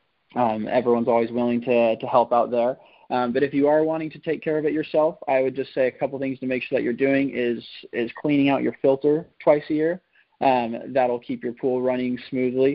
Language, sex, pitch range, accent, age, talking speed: English, male, 120-135 Hz, American, 20-39, 235 wpm